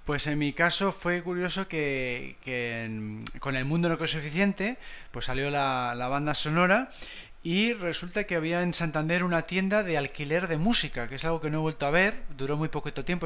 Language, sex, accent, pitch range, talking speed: Spanish, male, Spanish, 140-180 Hz, 210 wpm